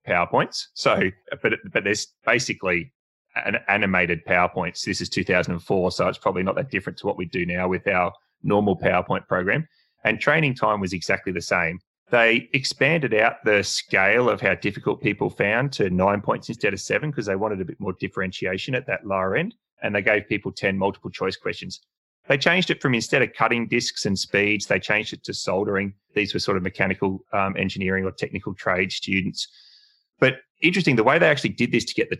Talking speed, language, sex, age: 200 wpm, English, male, 30-49